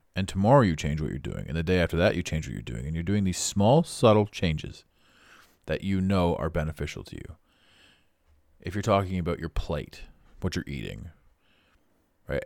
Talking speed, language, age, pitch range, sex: 195 wpm, English, 30-49, 80-105 Hz, male